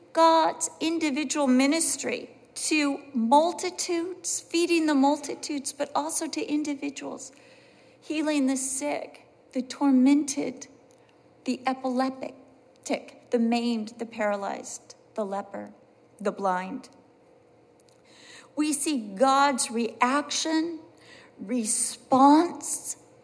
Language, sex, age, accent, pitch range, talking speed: English, female, 40-59, American, 220-290 Hz, 85 wpm